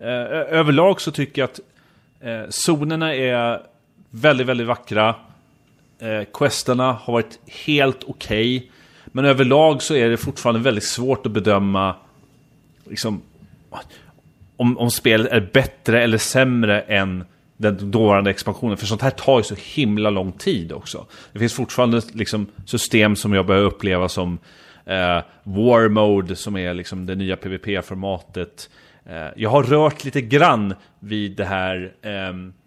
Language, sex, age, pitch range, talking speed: Swedish, male, 30-49, 100-130 Hz, 130 wpm